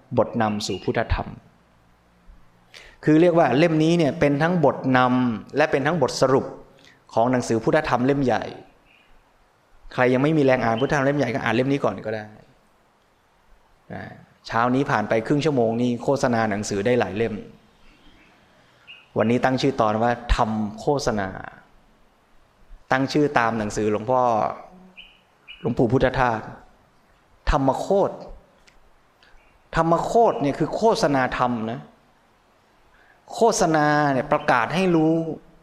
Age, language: 20-39, Thai